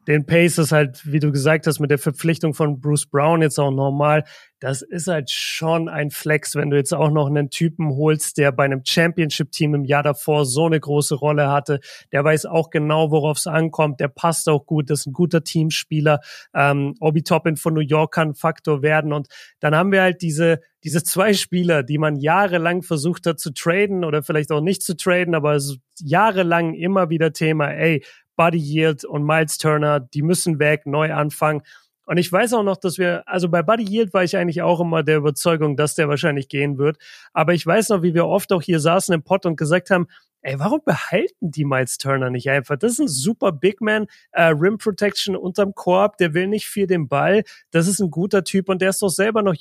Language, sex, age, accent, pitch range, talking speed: German, male, 30-49, German, 150-175 Hz, 220 wpm